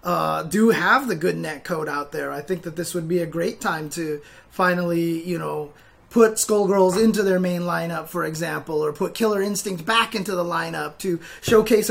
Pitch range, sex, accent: 175-210 Hz, male, American